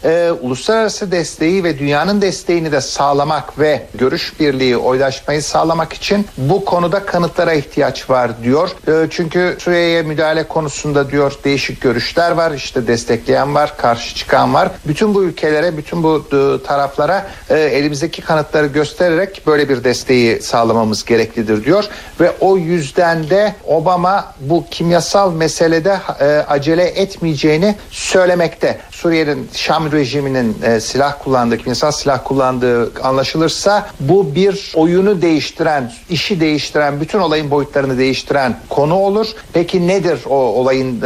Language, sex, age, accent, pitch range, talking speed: Turkish, male, 60-79, native, 135-175 Hz, 130 wpm